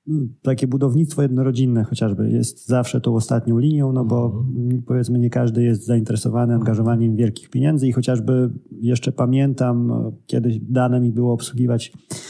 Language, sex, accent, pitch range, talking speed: Polish, male, native, 115-130 Hz, 135 wpm